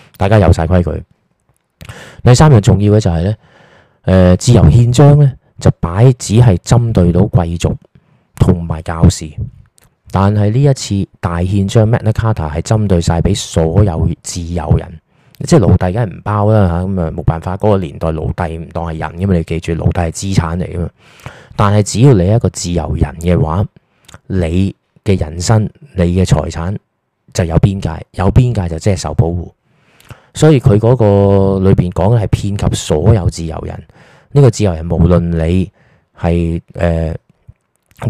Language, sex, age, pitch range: Chinese, male, 20-39, 85-110 Hz